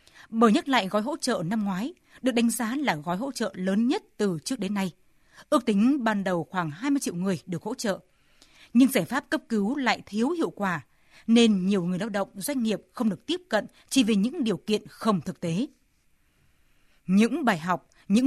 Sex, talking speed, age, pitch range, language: female, 210 wpm, 20-39, 190-250 Hz, Vietnamese